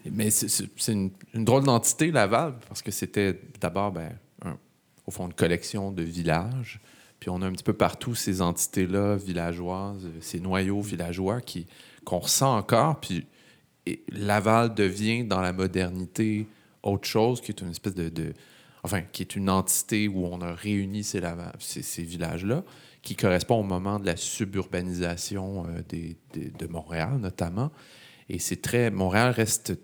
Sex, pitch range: male, 90-110 Hz